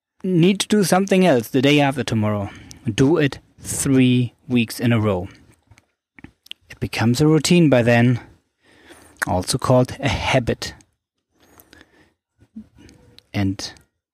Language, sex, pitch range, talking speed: English, male, 105-130 Hz, 115 wpm